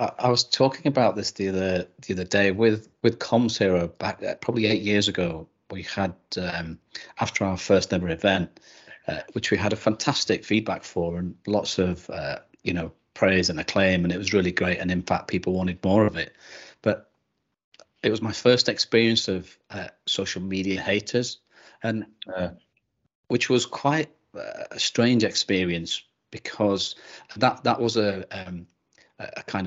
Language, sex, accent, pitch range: English, male, British, 95-110 Hz